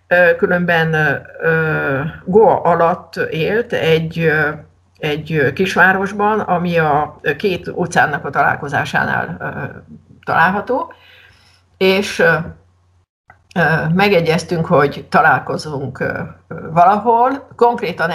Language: Hungarian